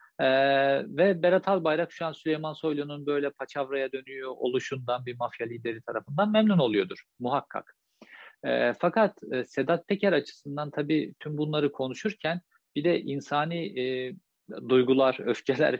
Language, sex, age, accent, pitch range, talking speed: Turkish, male, 50-69, native, 130-170 Hz, 130 wpm